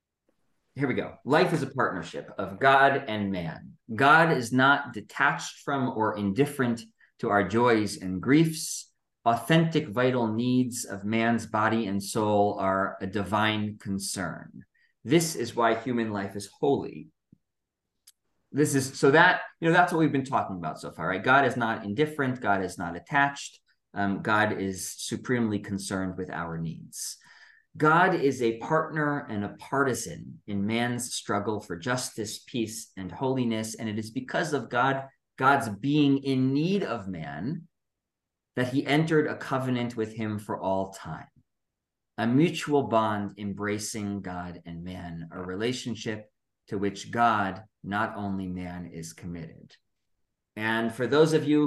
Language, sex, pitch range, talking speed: English, male, 100-135 Hz, 155 wpm